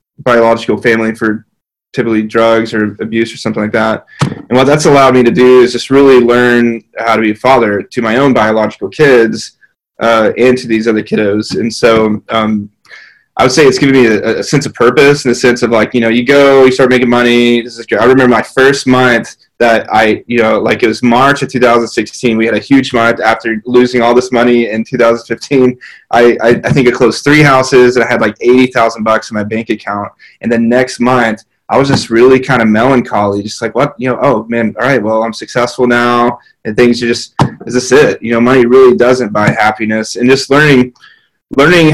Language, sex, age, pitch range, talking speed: English, male, 20-39, 110-125 Hz, 220 wpm